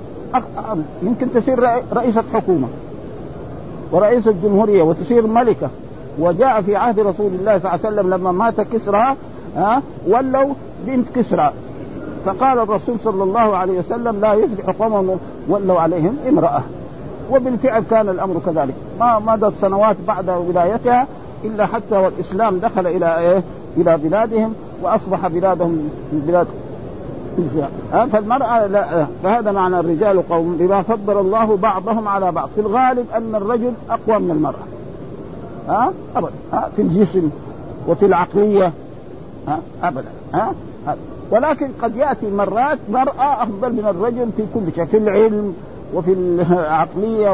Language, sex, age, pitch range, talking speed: Arabic, male, 50-69, 180-230 Hz, 130 wpm